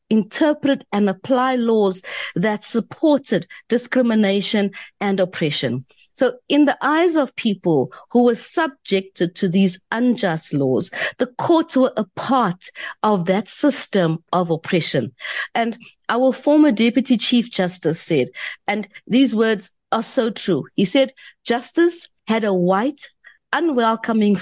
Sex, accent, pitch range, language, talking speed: female, South African, 185-265 Hz, English, 130 wpm